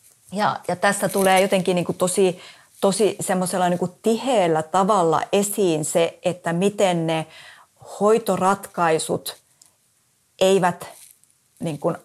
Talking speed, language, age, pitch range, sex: 95 wpm, Finnish, 30-49, 160-190 Hz, female